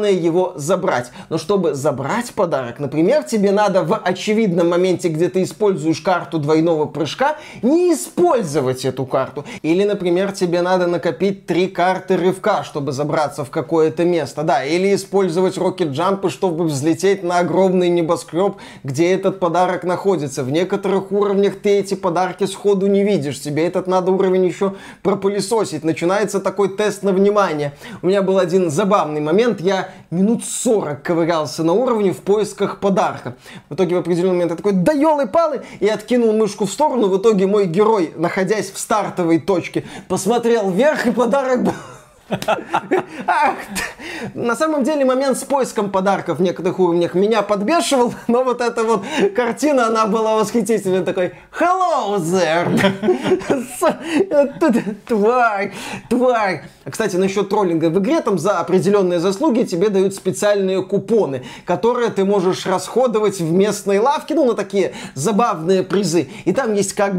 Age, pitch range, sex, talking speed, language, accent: 20-39, 175-215 Hz, male, 145 wpm, Russian, native